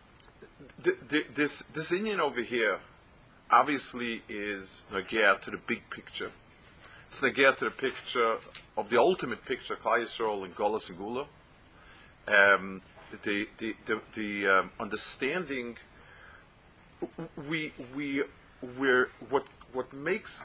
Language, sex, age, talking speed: English, male, 40-59, 125 wpm